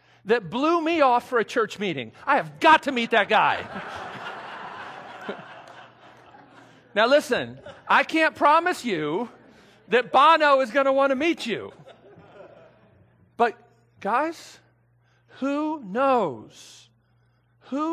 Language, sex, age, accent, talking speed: English, male, 50-69, American, 115 wpm